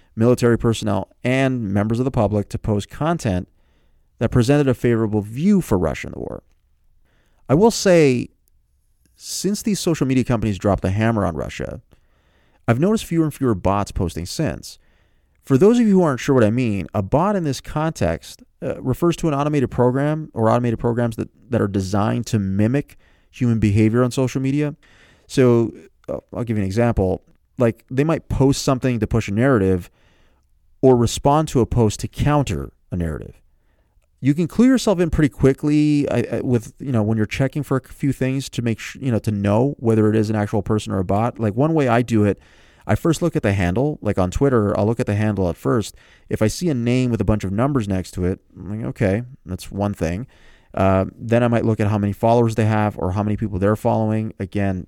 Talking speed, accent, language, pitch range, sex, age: 210 wpm, American, English, 95-130 Hz, male, 30-49